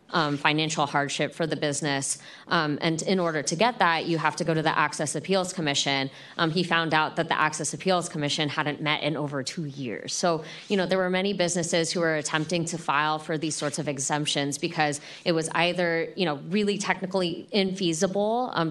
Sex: female